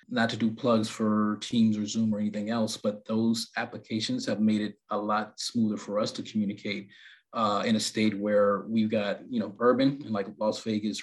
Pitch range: 105-115 Hz